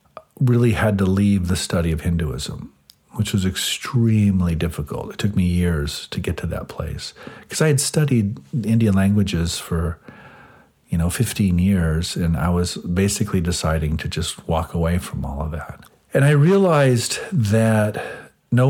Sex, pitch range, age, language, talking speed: male, 85-115 Hz, 50-69, English, 160 wpm